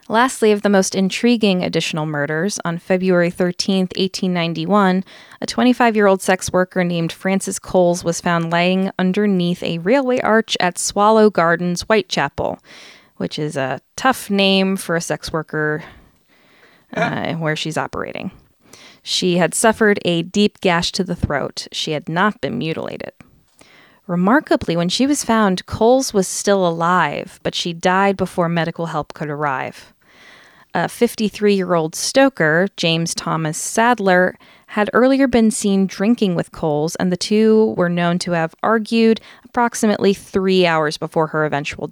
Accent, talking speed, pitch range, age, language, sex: American, 145 wpm, 170-210 Hz, 20-39, English, female